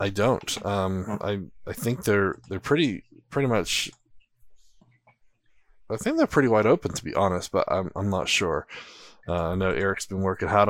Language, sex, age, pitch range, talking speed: English, male, 20-39, 95-115 Hz, 180 wpm